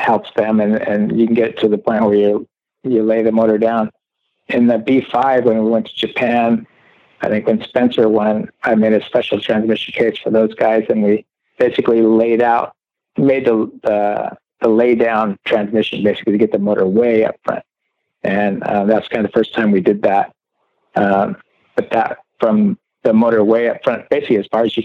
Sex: male